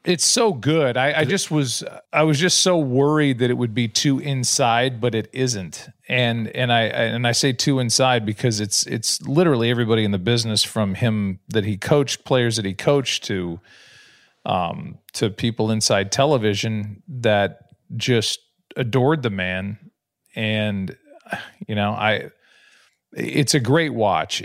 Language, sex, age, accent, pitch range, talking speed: English, male, 40-59, American, 100-135 Hz, 160 wpm